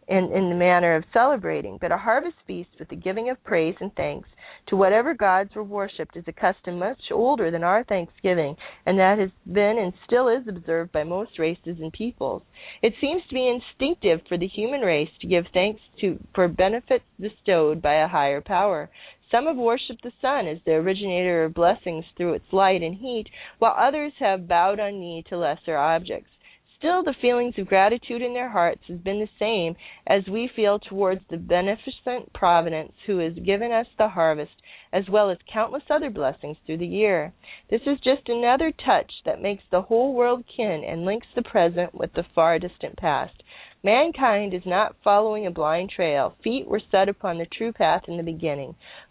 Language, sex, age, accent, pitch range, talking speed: English, female, 40-59, American, 175-235 Hz, 195 wpm